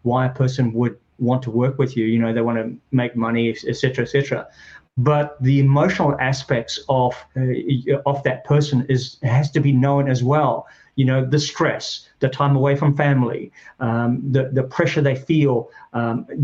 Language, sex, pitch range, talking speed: English, male, 125-145 Hz, 190 wpm